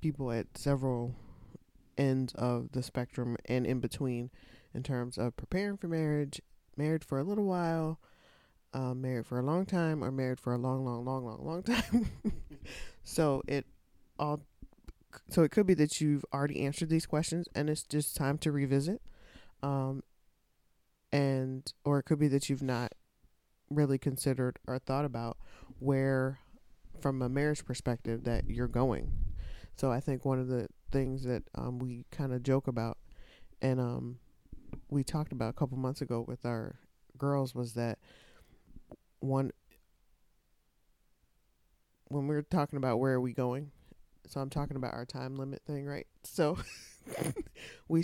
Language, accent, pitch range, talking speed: English, American, 120-145 Hz, 160 wpm